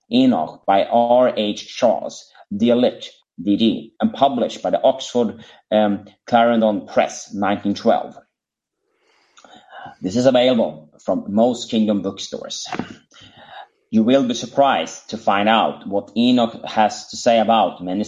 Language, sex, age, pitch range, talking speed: English, male, 30-49, 110-135 Hz, 120 wpm